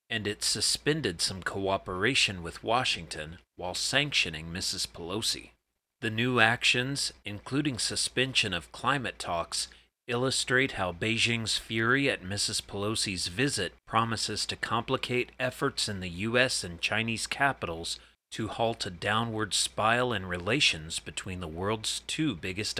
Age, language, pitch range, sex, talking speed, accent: 40-59, English, 90-120 Hz, male, 130 wpm, American